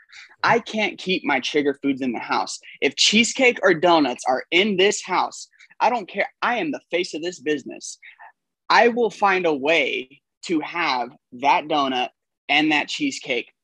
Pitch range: 145-240 Hz